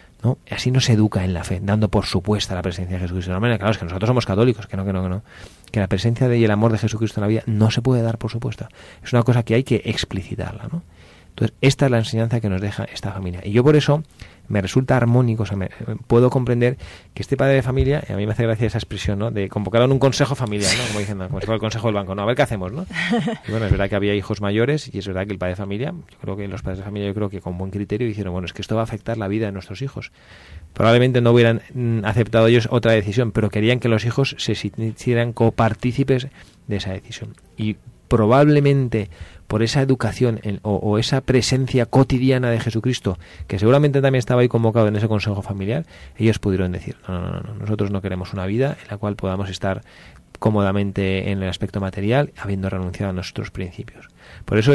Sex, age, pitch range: male, 30-49, 100-120 Hz